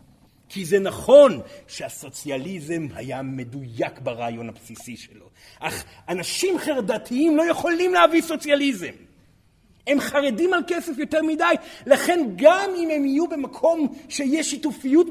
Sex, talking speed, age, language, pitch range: male, 120 wpm, 40-59, Hebrew, 200-305 Hz